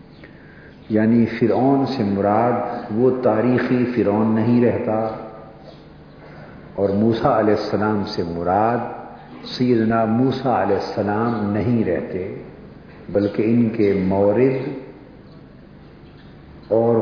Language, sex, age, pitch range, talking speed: Urdu, male, 50-69, 100-120 Hz, 90 wpm